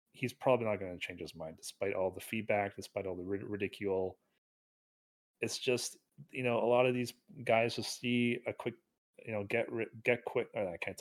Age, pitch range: 30-49, 95-125 Hz